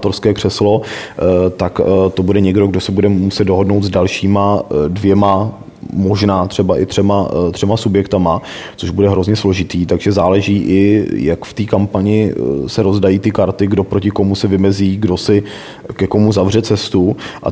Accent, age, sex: native, 30-49, male